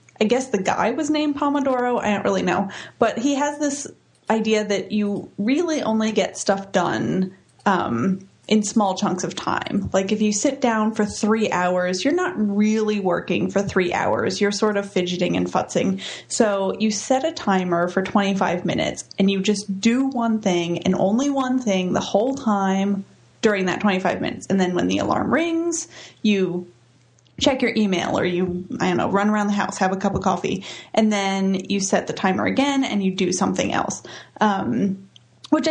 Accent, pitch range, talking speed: American, 190-245 Hz, 190 wpm